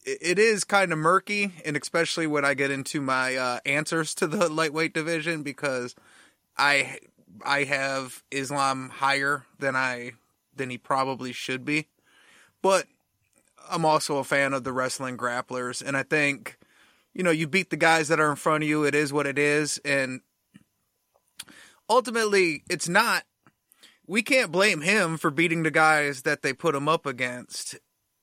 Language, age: English, 30-49